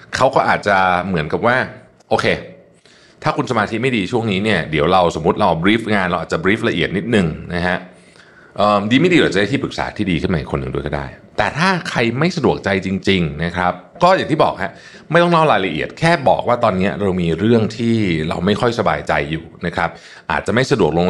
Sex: male